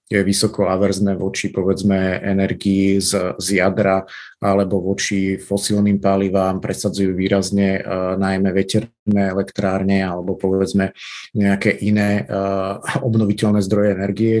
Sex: male